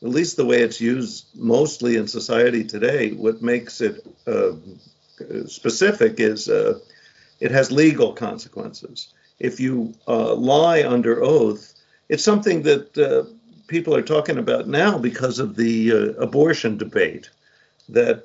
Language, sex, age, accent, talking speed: English, male, 50-69, American, 140 wpm